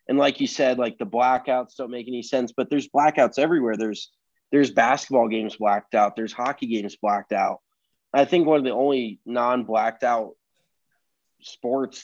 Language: English